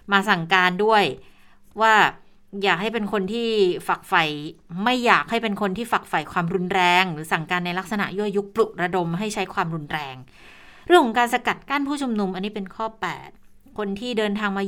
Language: Thai